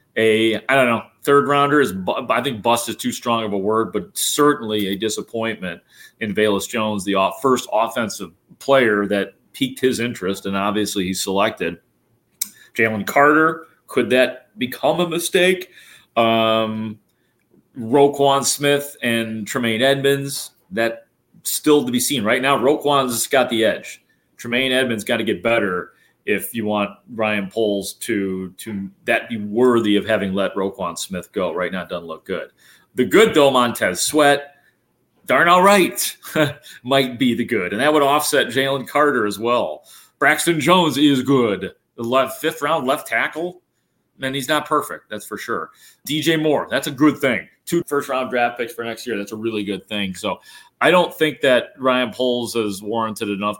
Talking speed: 170 wpm